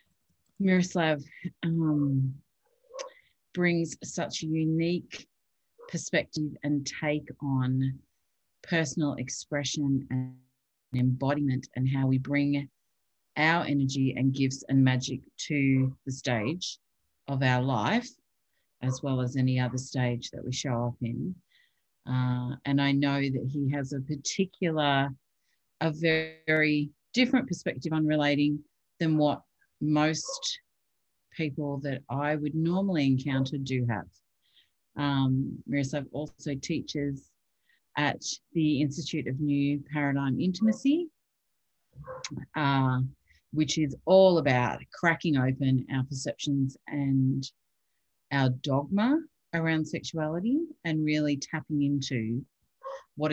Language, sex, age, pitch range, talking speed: English, female, 40-59, 130-160 Hz, 110 wpm